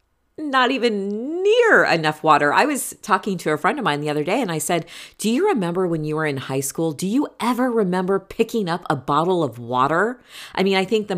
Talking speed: 230 wpm